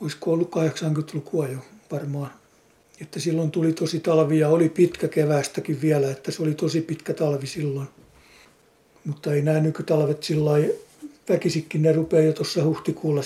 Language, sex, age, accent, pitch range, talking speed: English, male, 60-79, Finnish, 150-185 Hz, 155 wpm